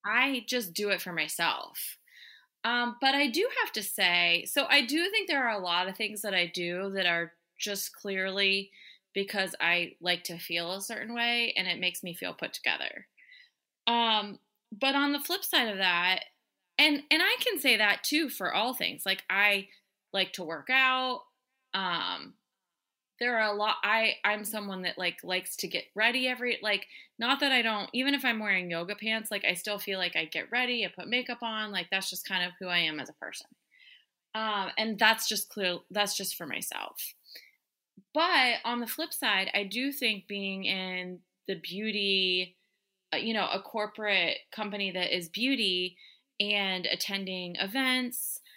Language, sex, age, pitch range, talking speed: English, female, 20-39, 185-250 Hz, 185 wpm